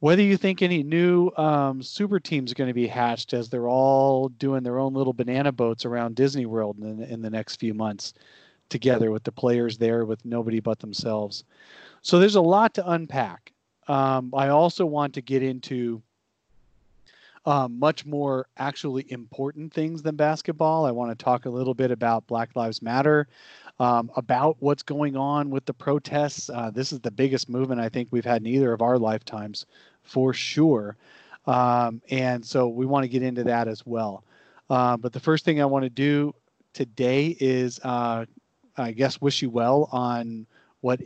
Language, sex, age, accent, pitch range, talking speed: English, male, 40-59, American, 120-145 Hz, 185 wpm